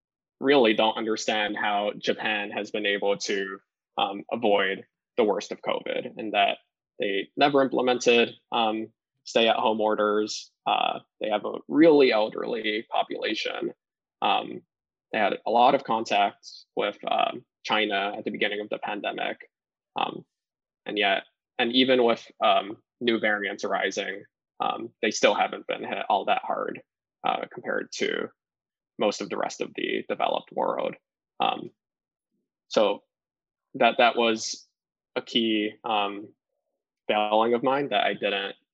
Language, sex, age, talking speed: English, male, 20-39, 140 wpm